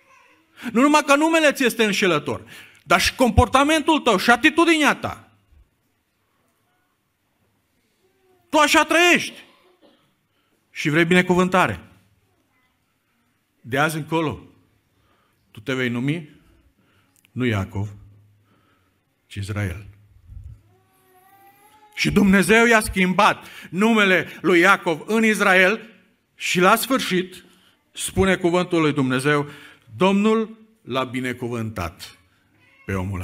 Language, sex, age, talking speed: Romanian, male, 50-69, 95 wpm